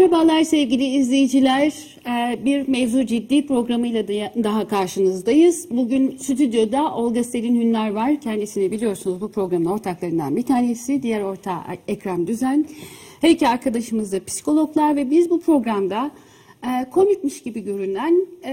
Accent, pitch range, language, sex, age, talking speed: native, 215-300 Hz, Turkish, female, 60-79, 120 wpm